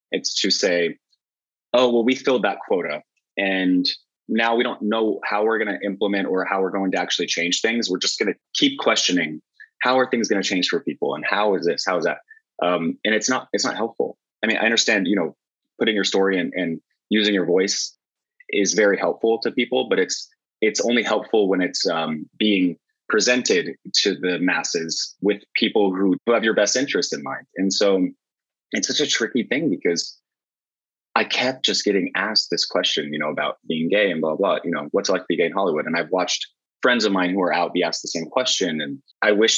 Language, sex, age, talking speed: English, male, 20-39, 220 wpm